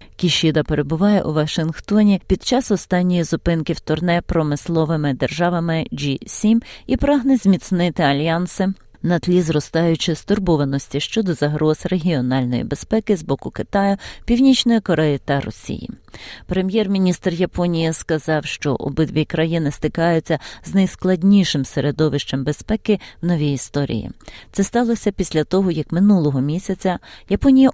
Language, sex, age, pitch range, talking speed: Ukrainian, female, 30-49, 150-195 Hz, 115 wpm